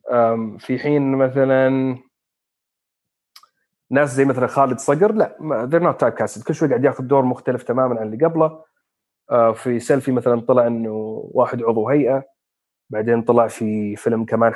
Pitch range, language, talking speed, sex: 115-140 Hz, Arabic, 145 wpm, male